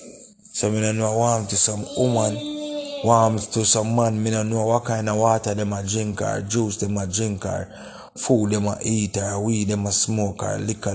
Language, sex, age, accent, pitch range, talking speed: English, male, 20-39, Jamaican, 105-125 Hz, 170 wpm